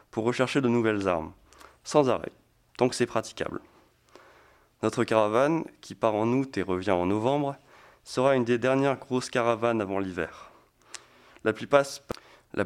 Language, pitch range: French, 95-120 Hz